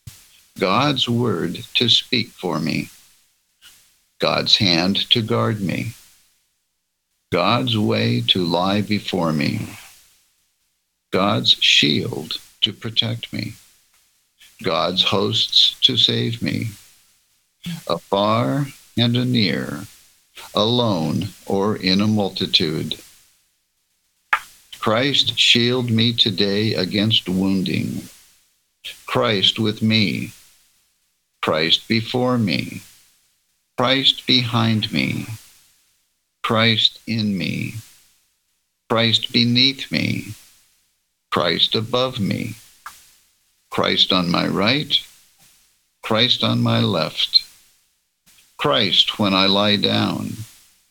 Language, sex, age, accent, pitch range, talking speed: English, male, 60-79, American, 100-120 Hz, 85 wpm